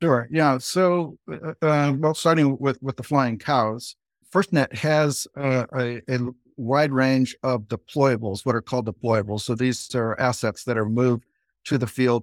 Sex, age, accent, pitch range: male, 60-79, American, 110-125 Hz